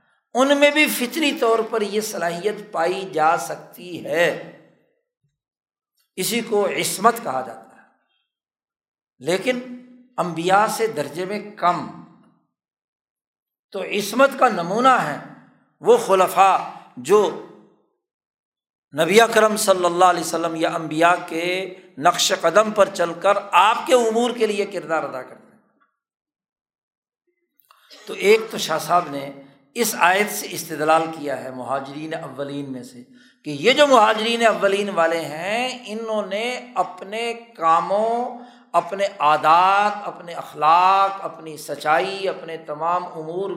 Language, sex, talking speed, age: Urdu, male, 125 wpm, 60-79